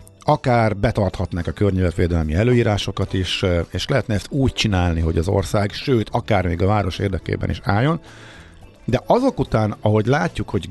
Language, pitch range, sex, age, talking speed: Hungarian, 90-110 Hz, male, 50-69, 155 wpm